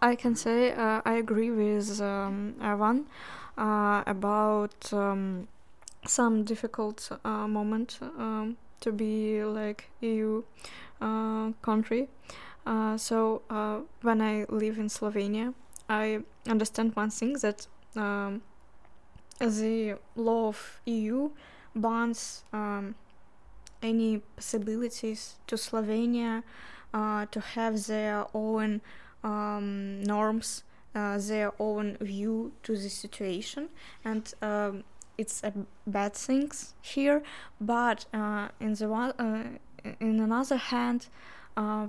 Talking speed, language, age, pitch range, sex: 115 wpm, Russian, 20-39, 210-225 Hz, female